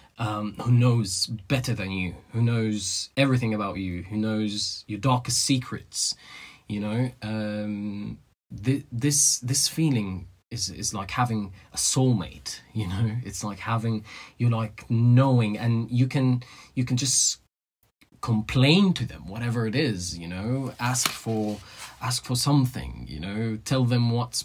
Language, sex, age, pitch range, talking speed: English, male, 20-39, 95-125 Hz, 150 wpm